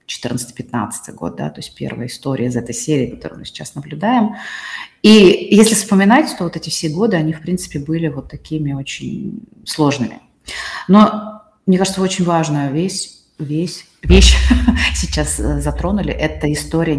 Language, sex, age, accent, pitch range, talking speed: Russian, female, 30-49, native, 135-170 Hz, 145 wpm